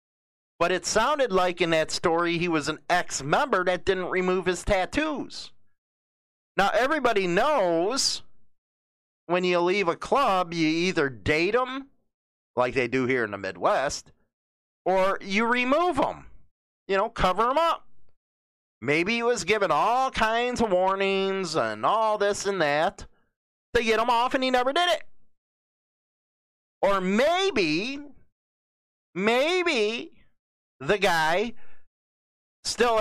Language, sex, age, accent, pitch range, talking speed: English, male, 40-59, American, 175-230 Hz, 130 wpm